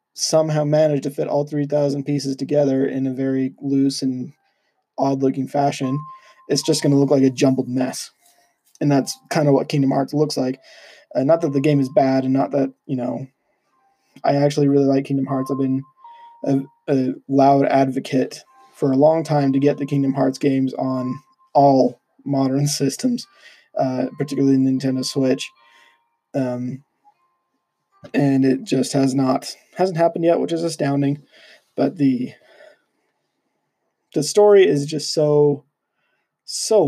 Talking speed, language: 155 wpm, English